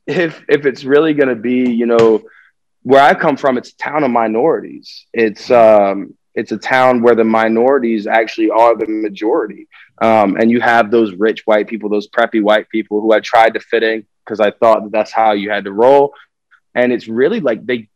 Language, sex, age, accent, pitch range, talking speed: English, male, 20-39, American, 110-135 Hz, 210 wpm